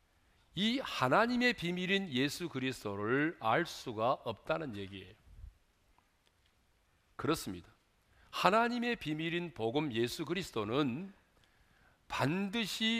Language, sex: Korean, male